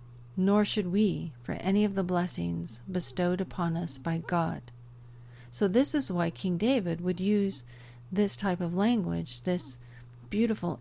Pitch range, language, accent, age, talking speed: 125-195 Hz, English, American, 50-69, 150 wpm